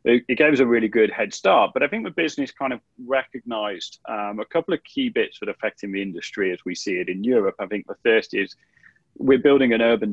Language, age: English, 30-49